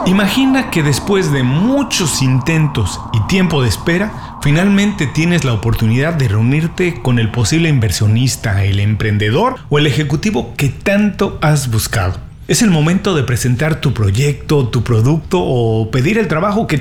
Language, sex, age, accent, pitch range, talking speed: Spanish, male, 40-59, Mexican, 120-175 Hz, 155 wpm